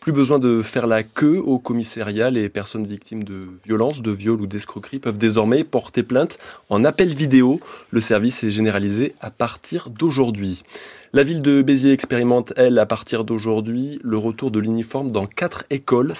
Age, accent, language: 20-39, French, French